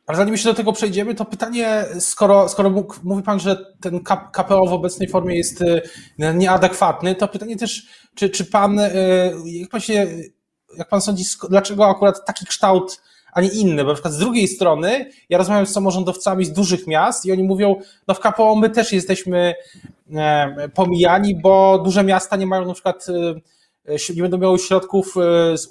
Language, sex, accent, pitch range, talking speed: Polish, male, native, 160-200 Hz, 175 wpm